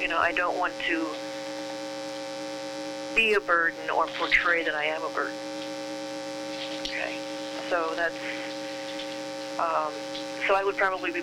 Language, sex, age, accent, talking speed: English, female, 40-59, American, 135 wpm